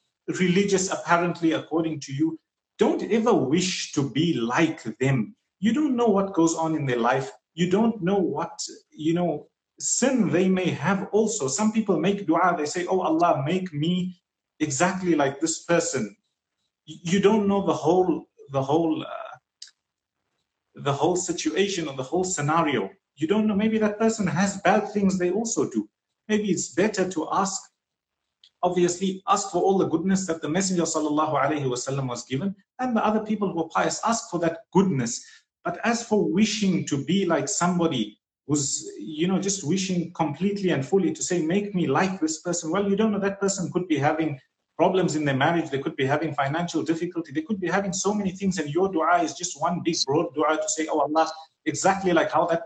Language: English